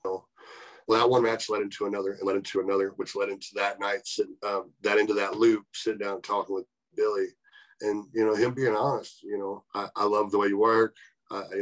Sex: male